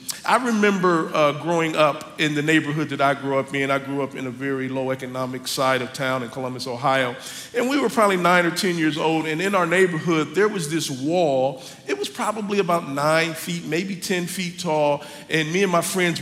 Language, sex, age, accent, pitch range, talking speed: English, male, 50-69, American, 145-195 Hz, 220 wpm